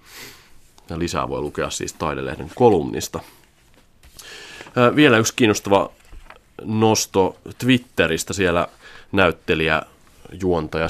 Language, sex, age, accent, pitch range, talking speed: Finnish, male, 30-49, native, 80-100 Hz, 90 wpm